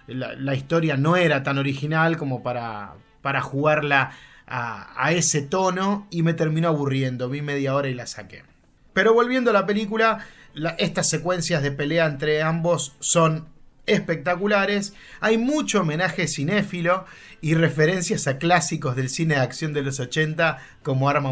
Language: Spanish